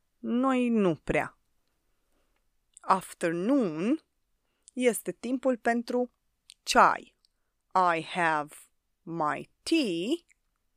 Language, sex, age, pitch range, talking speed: Romanian, female, 30-49, 170-255 Hz, 65 wpm